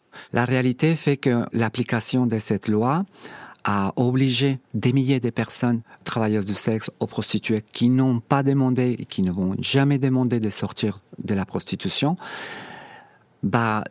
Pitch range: 100-130 Hz